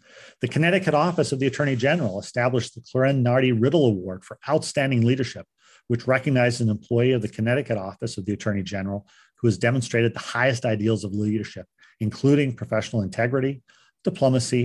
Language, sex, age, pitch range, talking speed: English, male, 40-59, 110-135 Hz, 165 wpm